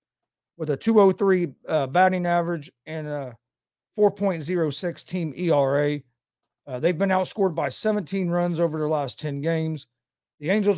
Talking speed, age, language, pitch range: 140 wpm, 40-59, English, 145-185 Hz